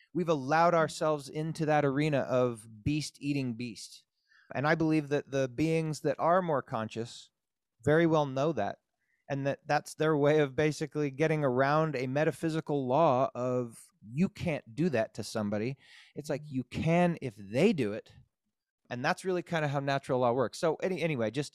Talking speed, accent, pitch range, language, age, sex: 175 wpm, American, 120-155 Hz, English, 30-49, male